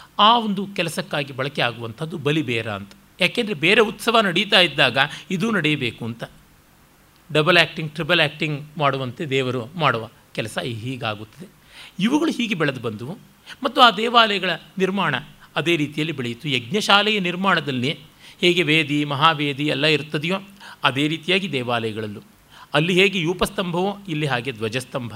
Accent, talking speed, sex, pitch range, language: native, 120 wpm, male, 140-195 Hz, Kannada